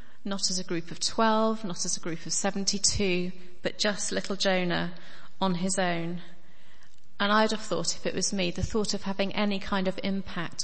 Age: 30-49